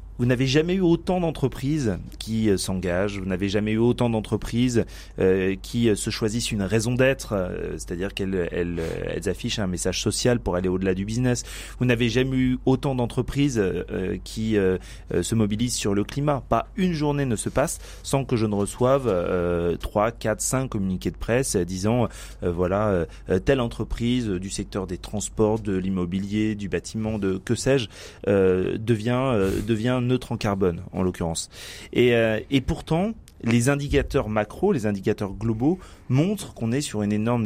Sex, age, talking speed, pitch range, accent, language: male, 30-49, 180 wpm, 95-125 Hz, French, French